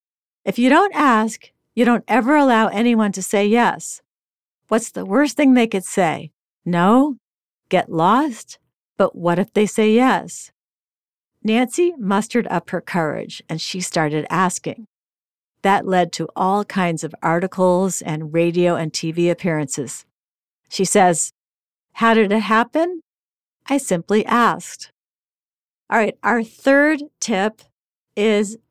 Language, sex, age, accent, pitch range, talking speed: English, female, 50-69, American, 170-220 Hz, 135 wpm